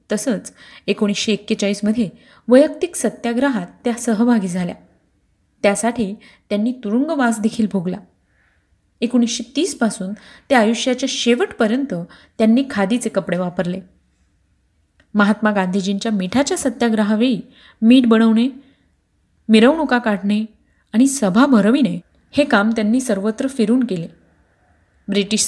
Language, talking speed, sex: Marathi, 95 wpm, female